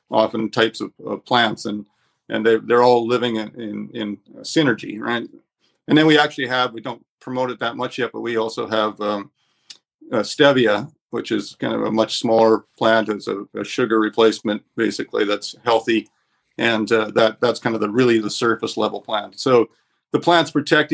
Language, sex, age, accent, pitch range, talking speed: English, male, 50-69, American, 110-135 Hz, 190 wpm